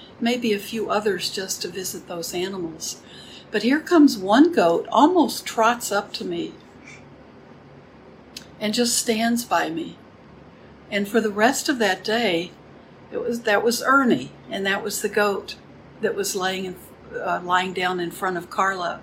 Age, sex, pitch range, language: 60-79, female, 185-225 Hz, English